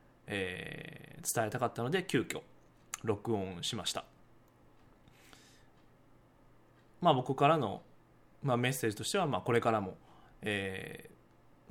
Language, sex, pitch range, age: Japanese, male, 110-140 Hz, 20-39